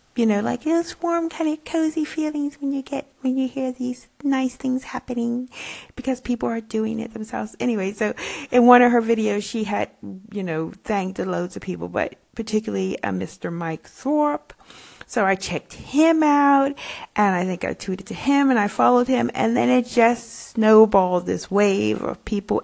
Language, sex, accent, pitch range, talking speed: English, female, American, 190-250 Hz, 190 wpm